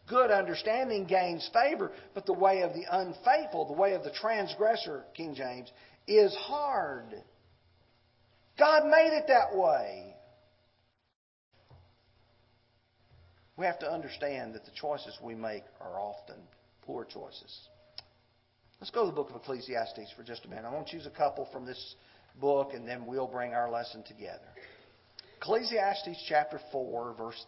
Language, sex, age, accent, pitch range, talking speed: English, male, 40-59, American, 120-195 Hz, 150 wpm